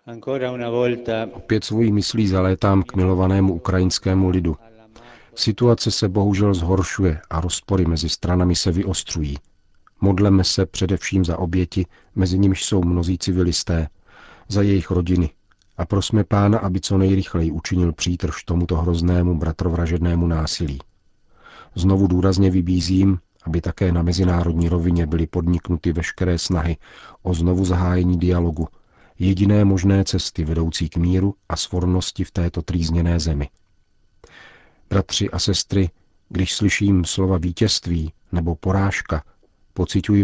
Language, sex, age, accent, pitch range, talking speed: Czech, male, 40-59, native, 85-100 Hz, 120 wpm